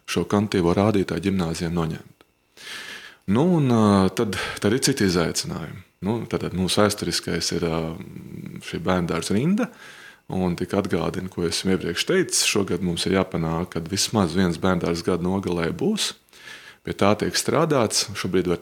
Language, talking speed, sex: English, 145 wpm, male